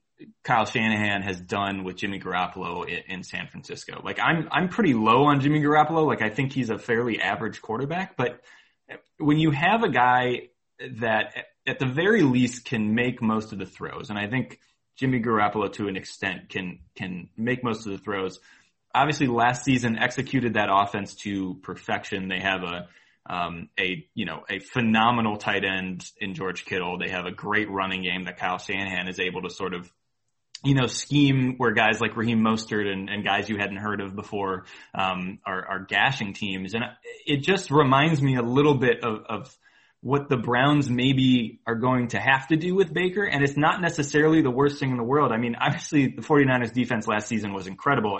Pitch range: 100-140 Hz